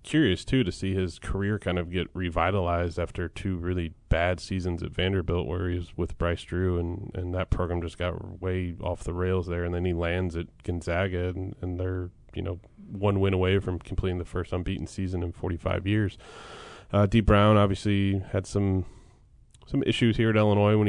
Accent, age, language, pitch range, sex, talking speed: American, 20-39, English, 90-105 Hz, male, 200 wpm